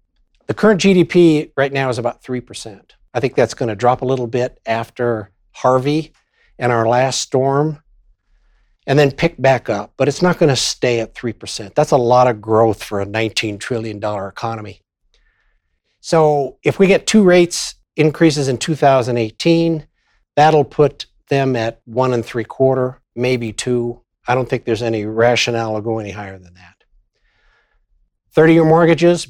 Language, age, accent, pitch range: English, 60-79, American, 110-140 Hz